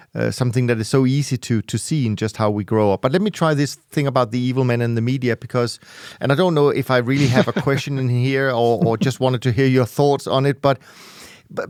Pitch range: 120-150 Hz